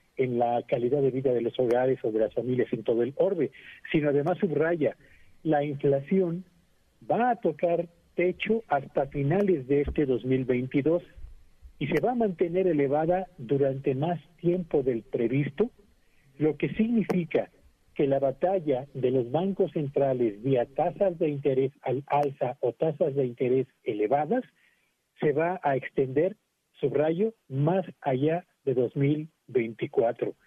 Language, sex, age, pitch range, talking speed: Spanish, male, 50-69, 135-175 Hz, 140 wpm